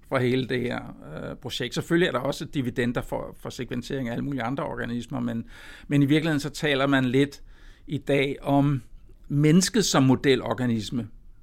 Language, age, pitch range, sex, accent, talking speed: Danish, 60-79, 130-175 Hz, male, native, 175 wpm